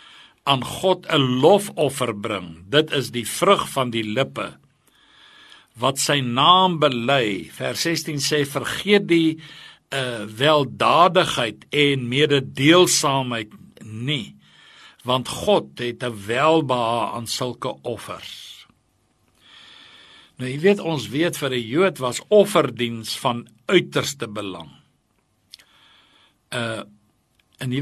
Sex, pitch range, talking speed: male, 120-165 Hz, 110 wpm